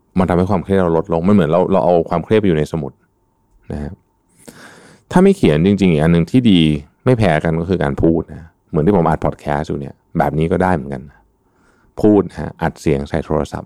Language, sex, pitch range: Thai, male, 80-100 Hz